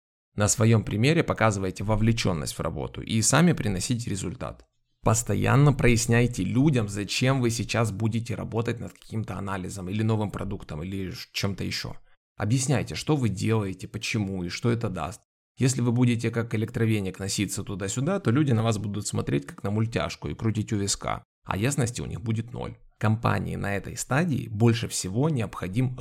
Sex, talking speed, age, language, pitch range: male, 160 wpm, 20-39, Russian, 100-120 Hz